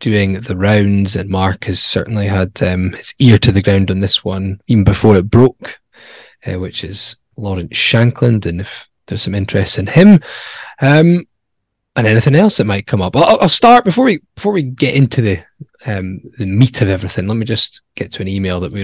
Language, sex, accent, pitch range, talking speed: English, male, British, 95-125 Hz, 205 wpm